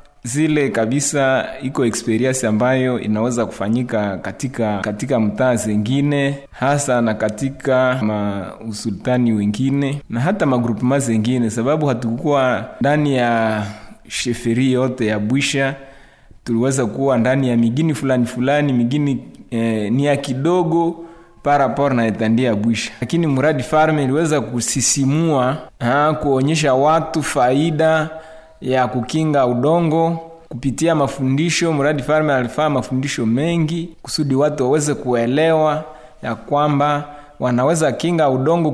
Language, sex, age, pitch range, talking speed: French, male, 30-49, 120-150 Hz, 115 wpm